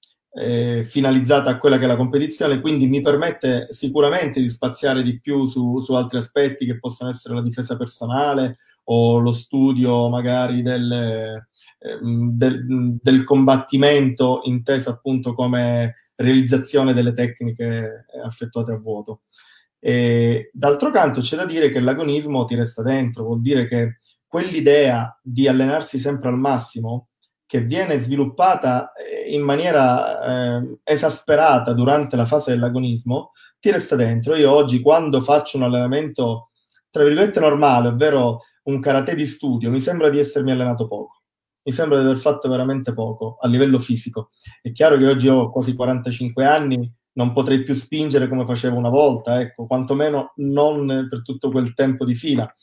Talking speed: 150 wpm